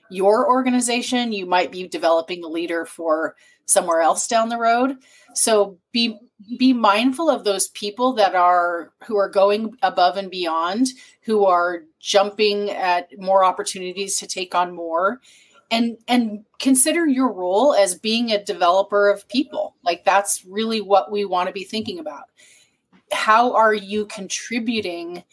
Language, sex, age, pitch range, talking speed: English, female, 30-49, 190-240 Hz, 150 wpm